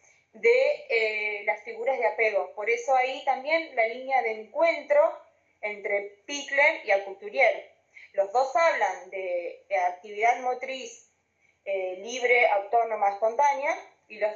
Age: 20-39